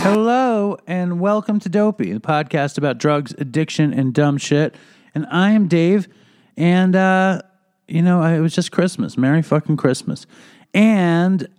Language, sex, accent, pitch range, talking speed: English, male, American, 140-185 Hz, 155 wpm